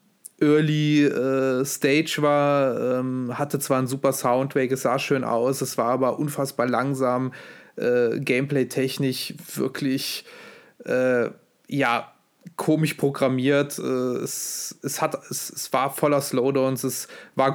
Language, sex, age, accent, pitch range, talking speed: German, male, 30-49, German, 130-145 Hz, 125 wpm